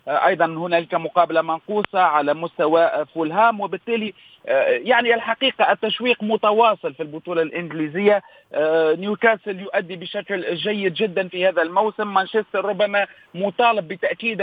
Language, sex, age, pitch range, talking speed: Arabic, male, 40-59, 180-215 Hz, 110 wpm